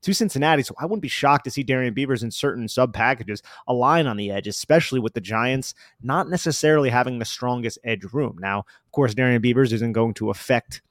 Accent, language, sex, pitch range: American, English, male, 115-135 Hz